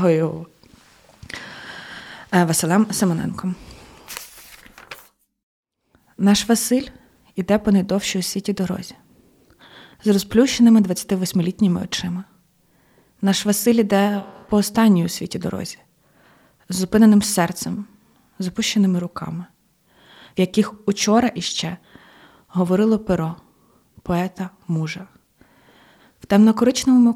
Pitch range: 180-210 Hz